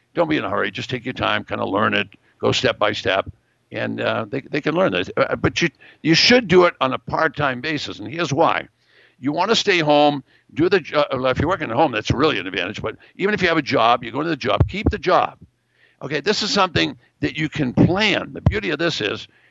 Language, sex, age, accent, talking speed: English, male, 60-79, American, 255 wpm